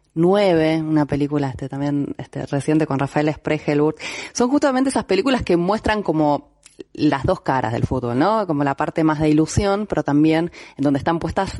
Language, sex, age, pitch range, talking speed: Spanish, female, 30-49, 150-210 Hz, 180 wpm